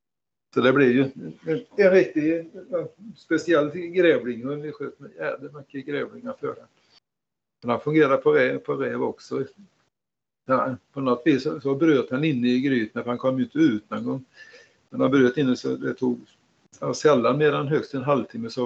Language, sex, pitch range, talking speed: Swedish, male, 125-155 Hz, 175 wpm